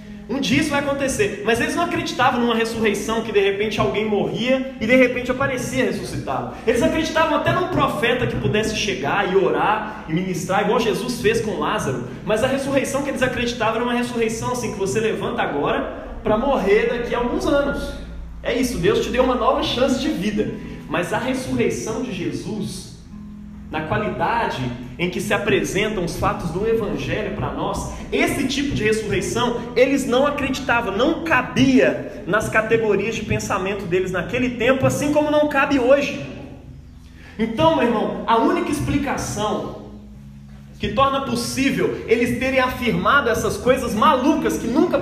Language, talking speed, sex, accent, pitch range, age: Portuguese, 165 wpm, male, Brazilian, 205-270 Hz, 20-39